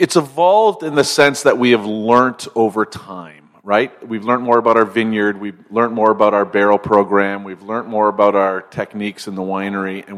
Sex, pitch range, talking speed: male, 100-115 Hz, 205 wpm